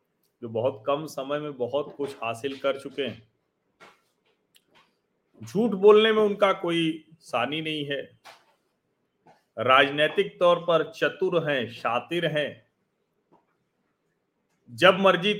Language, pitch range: Hindi, 145-210 Hz